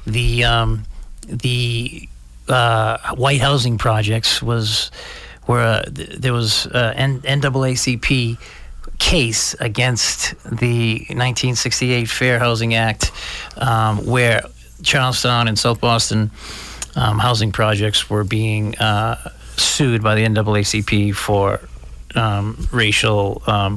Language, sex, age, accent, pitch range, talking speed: English, male, 30-49, American, 110-125 Hz, 105 wpm